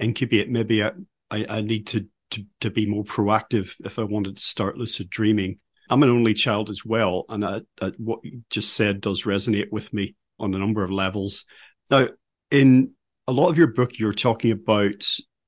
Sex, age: male, 40-59